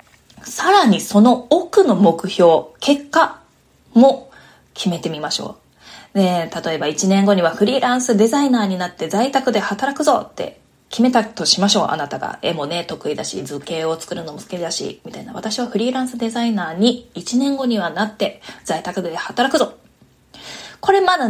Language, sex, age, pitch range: Japanese, female, 20-39, 190-275 Hz